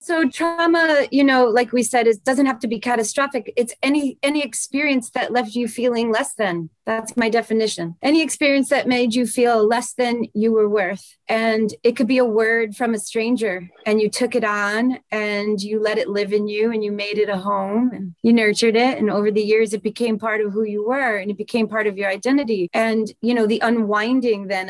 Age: 30-49